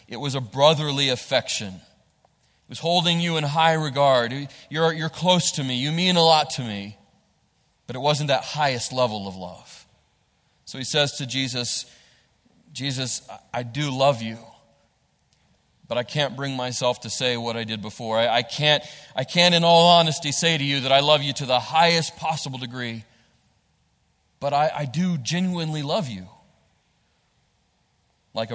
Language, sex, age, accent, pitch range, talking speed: English, male, 30-49, American, 120-160 Hz, 170 wpm